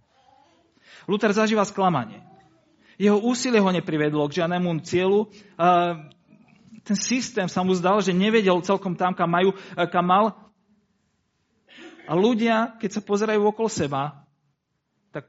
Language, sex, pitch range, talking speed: Slovak, male, 130-200 Hz, 125 wpm